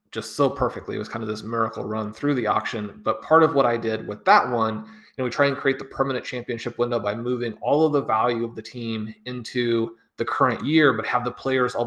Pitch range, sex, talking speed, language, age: 110-135 Hz, male, 260 wpm, English, 30-49